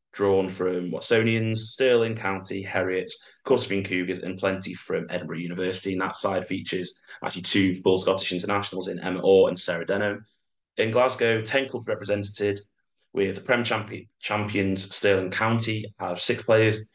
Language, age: English, 30-49